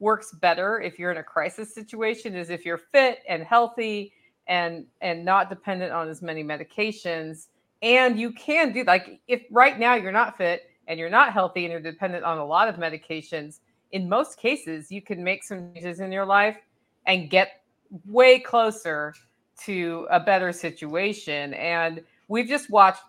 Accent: American